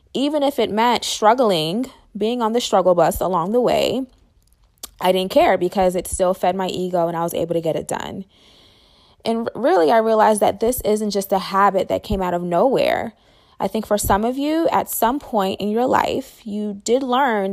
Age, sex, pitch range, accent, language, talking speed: 20-39, female, 185-235 Hz, American, English, 205 wpm